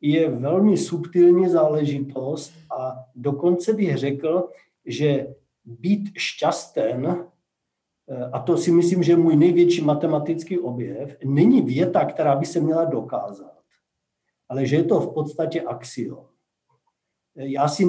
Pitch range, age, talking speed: 145-180 Hz, 50-69, 125 wpm